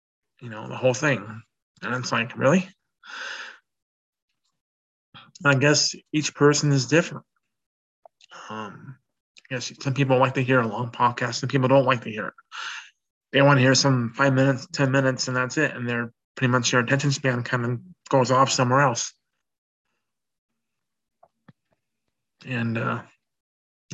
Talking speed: 150 wpm